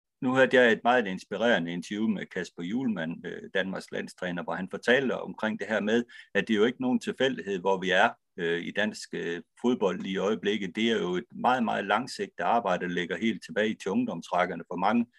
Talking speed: 200 wpm